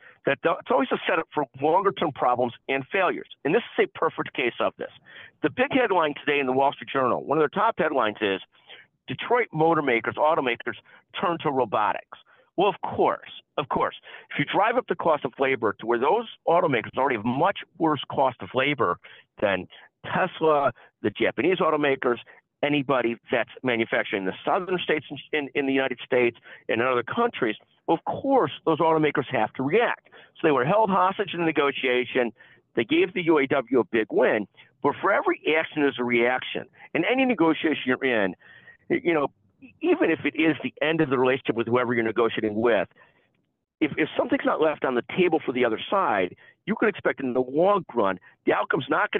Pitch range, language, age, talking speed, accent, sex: 125-165 Hz, English, 50-69, 195 wpm, American, male